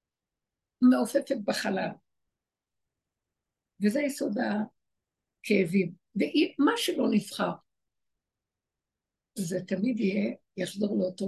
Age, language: 60-79, Hebrew